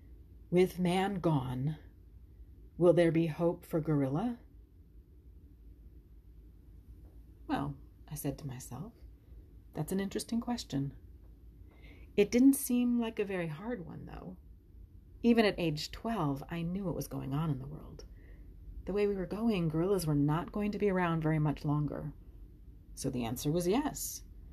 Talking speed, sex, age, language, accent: 145 wpm, female, 30-49, English, American